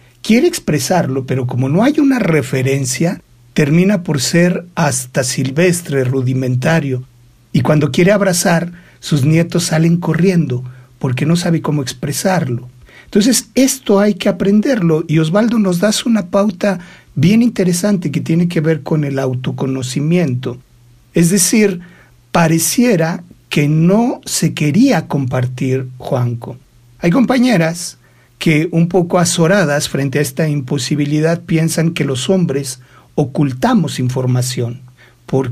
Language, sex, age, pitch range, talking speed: Spanish, male, 60-79, 130-180 Hz, 125 wpm